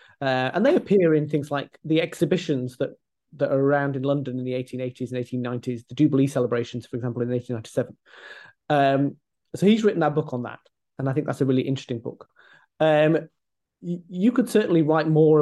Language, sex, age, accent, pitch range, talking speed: English, male, 30-49, British, 130-160 Hz, 200 wpm